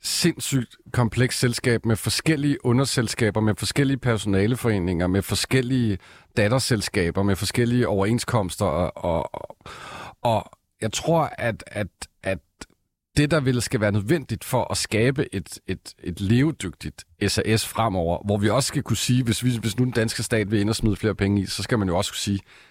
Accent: native